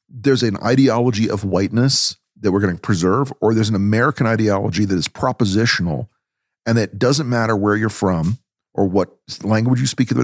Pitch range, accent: 105-130 Hz, American